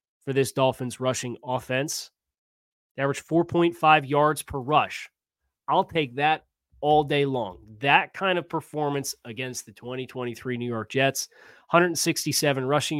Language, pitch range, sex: English, 125-155 Hz, male